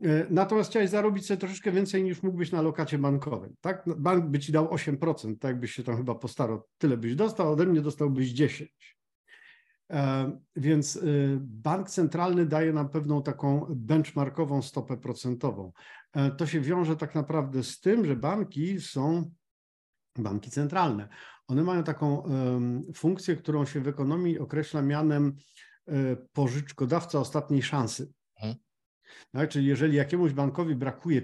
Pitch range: 130-165 Hz